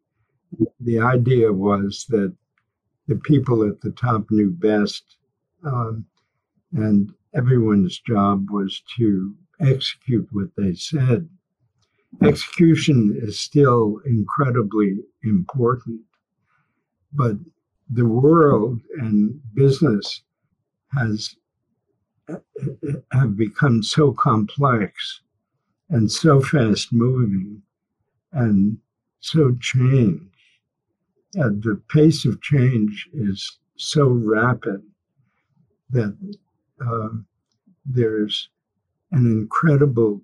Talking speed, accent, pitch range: 80 wpm, American, 105-140 Hz